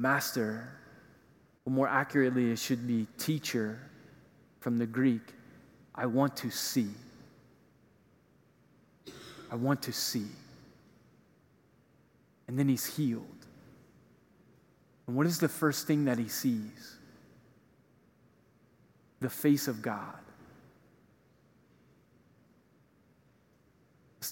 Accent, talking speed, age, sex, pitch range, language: American, 90 wpm, 30-49, male, 120-140 Hz, English